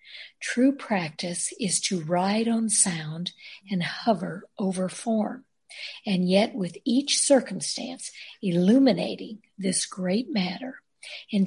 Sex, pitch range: female, 180-235 Hz